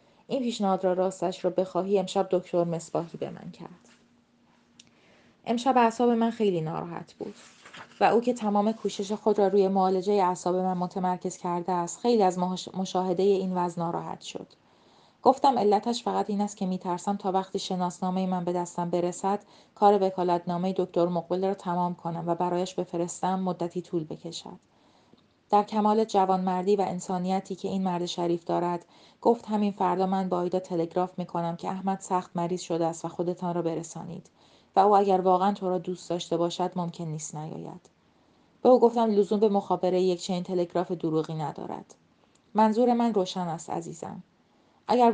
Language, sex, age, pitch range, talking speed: Persian, female, 30-49, 175-195 Hz, 165 wpm